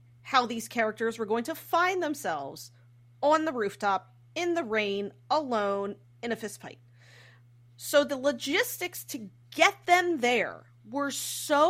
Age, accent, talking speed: 30-49, American, 145 wpm